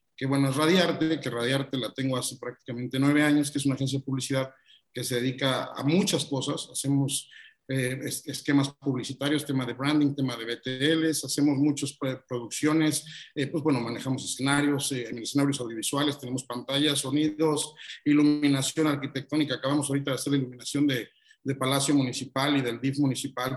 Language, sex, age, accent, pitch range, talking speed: Spanish, male, 50-69, Mexican, 130-145 Hz, 165 wpm